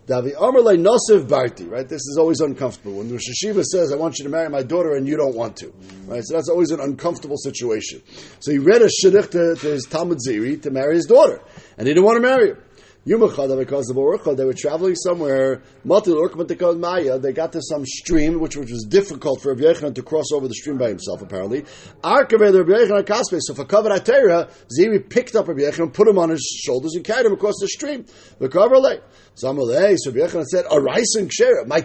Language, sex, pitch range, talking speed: English, male, 140-205 Hz, 175 wpm